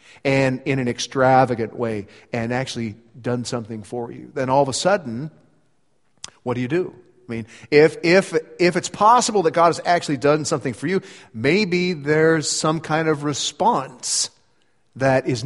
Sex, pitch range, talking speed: male, 115-155 Hz, 165 wpm